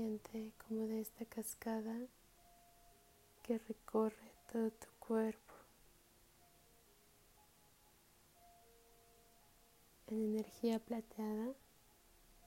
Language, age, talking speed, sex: Spanish, 20-39, 60 wpm, female